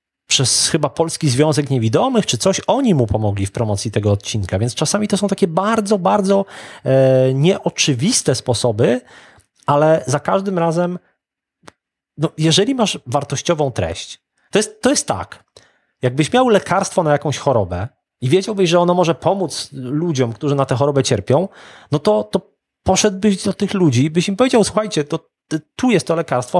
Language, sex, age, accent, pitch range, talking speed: Polish, male, 30-49, native, 115-165 Hz, 160 wpm